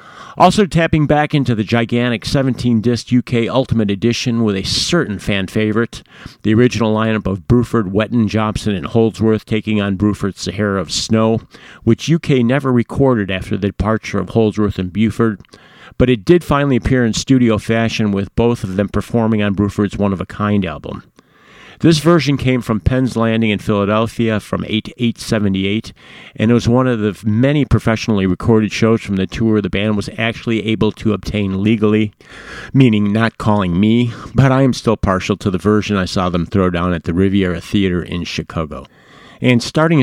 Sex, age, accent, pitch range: male, 50-69, American, 100-120 Hz